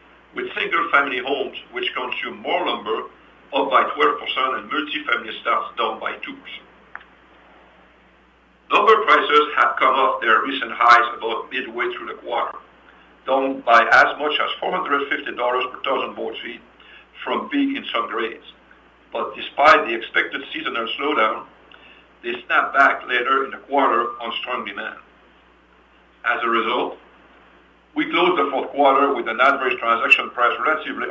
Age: 60-79